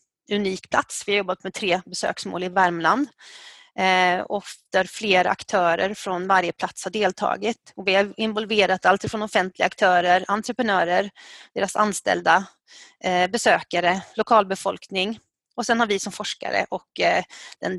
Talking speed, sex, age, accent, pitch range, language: 125 wpm, female, 30-49, native, 185-225 Hz, Swedish